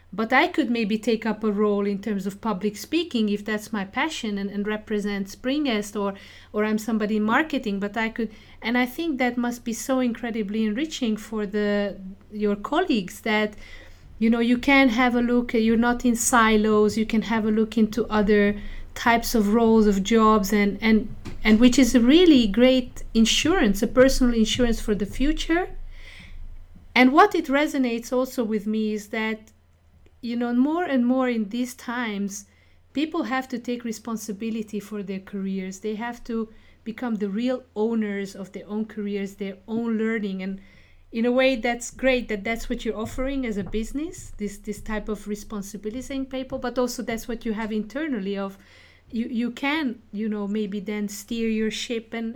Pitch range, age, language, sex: 210-245 Hz, 40-59, English, female